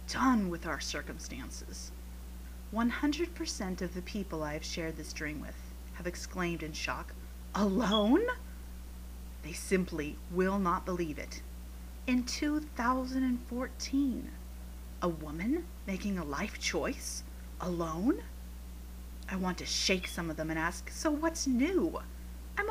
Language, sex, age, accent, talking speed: English, female, 30-49, American, 125 wpm